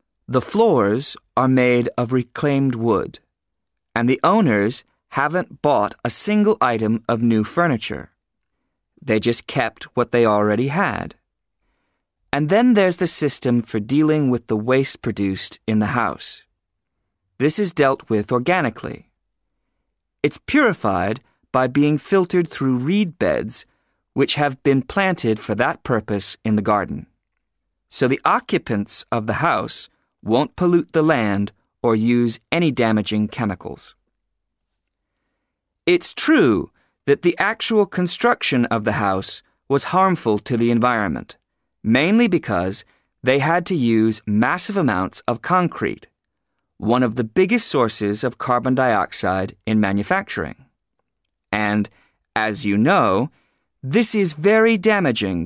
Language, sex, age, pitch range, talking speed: English, male, 30-49, 105-160 Hz, 130 wpm